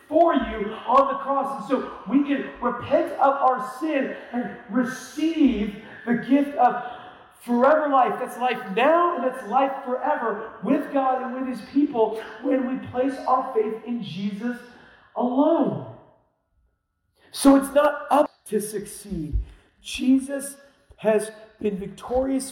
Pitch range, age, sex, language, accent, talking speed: 220-275 Hz, 40-59, male, English, American, 135 wpm